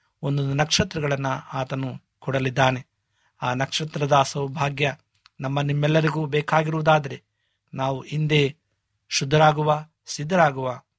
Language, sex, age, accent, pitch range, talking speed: Kannada, male, 50-69, native, 130-150 Hz, 75 wpm